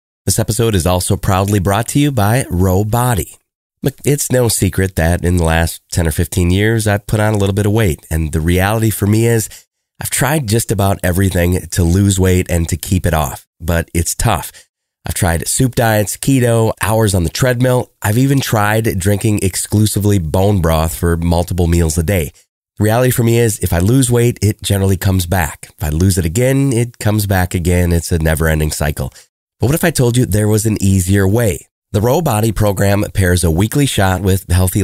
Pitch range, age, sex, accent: 90-115 Hz, 30-49, male, American